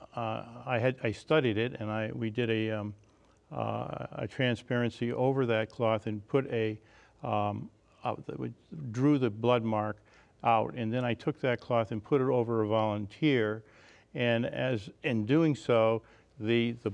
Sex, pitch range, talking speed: male, 110-125 Hz, 165 wpm